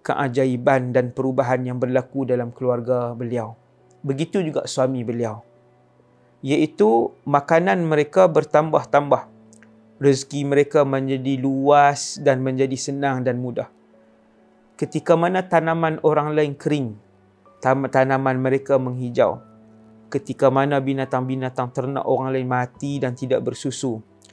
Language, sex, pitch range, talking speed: English, male, 125-150 Hz, 110 wpm